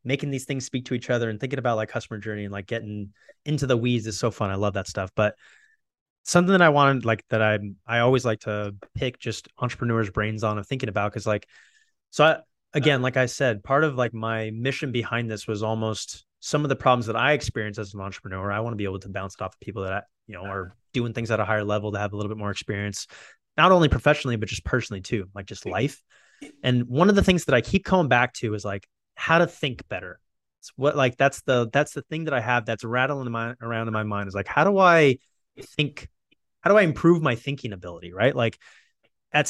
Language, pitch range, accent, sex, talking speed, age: English, 105-135 Hz, American, male, 245 wpm, 20-39